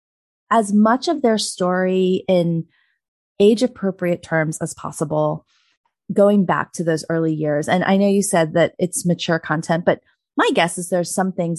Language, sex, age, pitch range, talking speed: English, female, 20-39, 165-200 Hz, 165 wpm